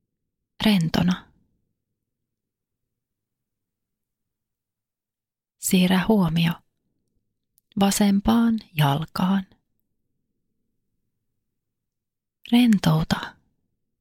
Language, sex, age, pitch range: Finnish, female, 30-49, 110-175 Hz